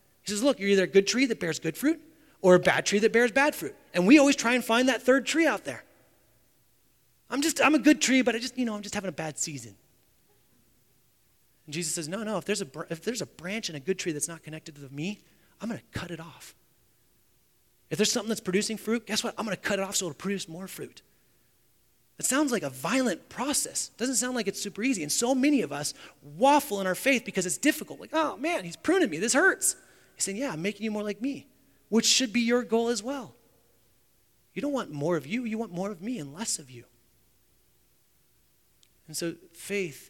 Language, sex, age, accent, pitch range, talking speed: English, male, 30-49, American, 145-225 Hz, 240 wpm